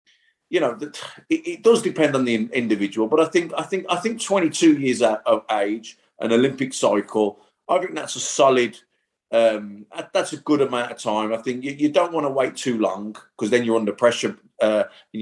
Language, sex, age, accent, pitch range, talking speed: English, male, 30-49, British, 105-130 Hz, 200 wpm